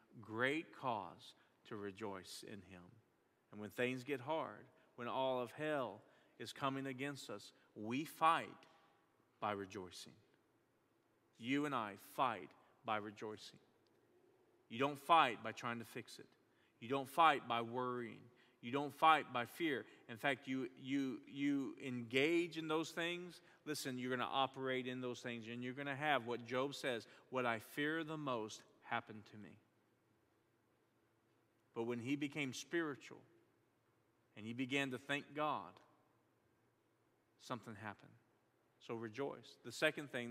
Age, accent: 40-59, American